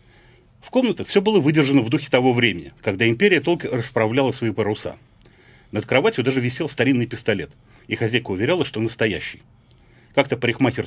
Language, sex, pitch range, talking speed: Russian, male, 110-155 Hz, 155 wpm